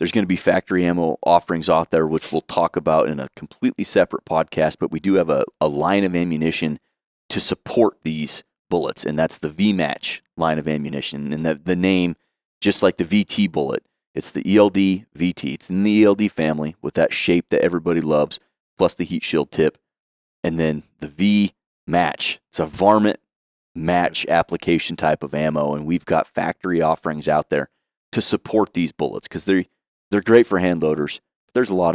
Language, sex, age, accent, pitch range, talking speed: English, male, 30-49, American, 75-95 Hz, 190 wpm